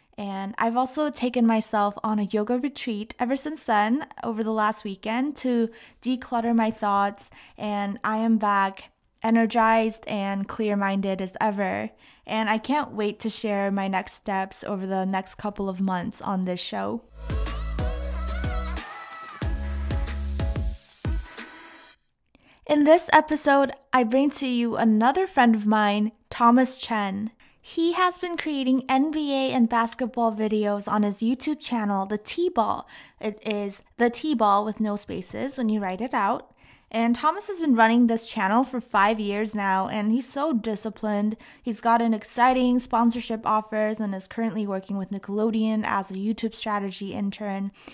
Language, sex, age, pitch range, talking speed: English, female, 20-39, 200-245 Hz, 150 wpm